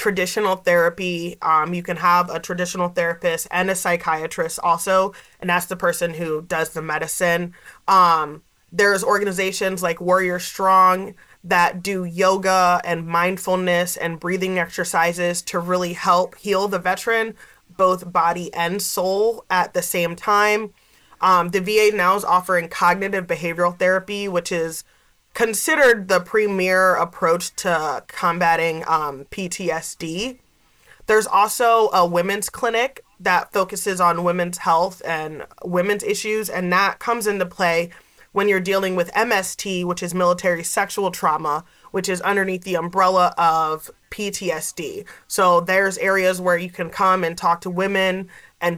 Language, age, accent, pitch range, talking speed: English, 20-39, American, 170-195 Hz, 140 wpm